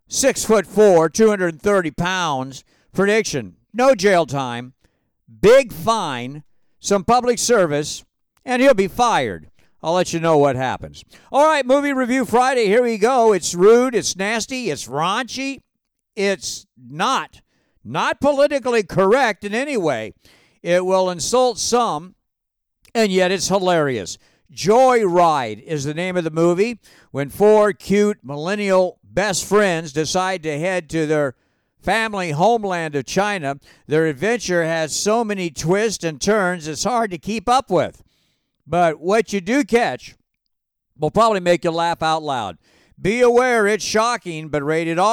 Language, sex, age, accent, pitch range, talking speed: English, male, 50-69, American, 160-225 Hz, 150 wpm